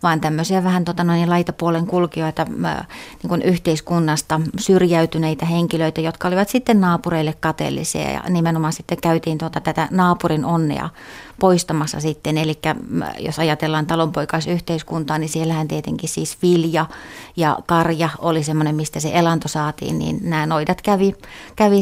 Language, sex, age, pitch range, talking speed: Finnish, female, 30-49, 155-175 Hz, 130 wpm